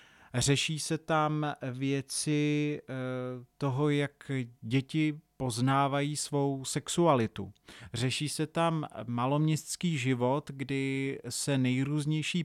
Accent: native